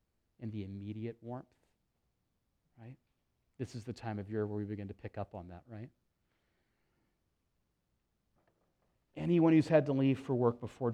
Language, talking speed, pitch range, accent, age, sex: English, 155 wpm, 110-145 Hz, American, 30-49, male